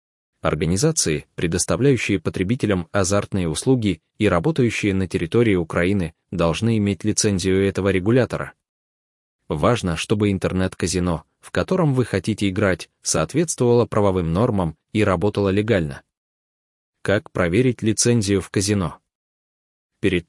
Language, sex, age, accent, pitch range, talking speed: Ukrainian, male, 20-39, native, 90-120 Hz, 105 wpm